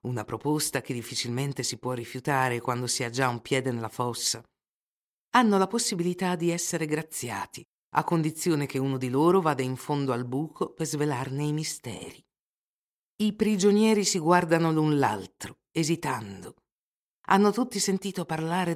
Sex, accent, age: female, native, 50-69